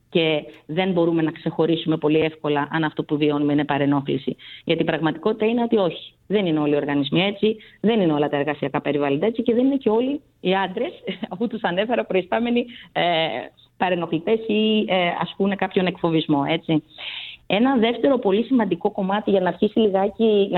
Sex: female